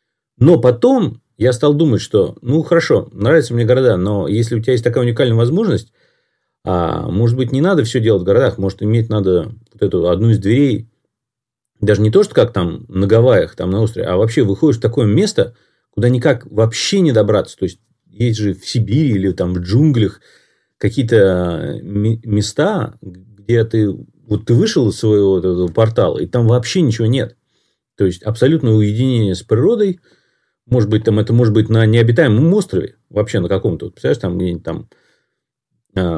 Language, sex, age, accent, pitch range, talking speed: Russian, male, 30-49, native, 105-130 Hz, 180 wpm